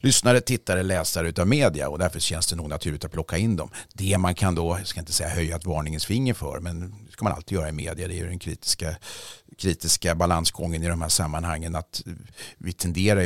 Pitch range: 85-100 Hz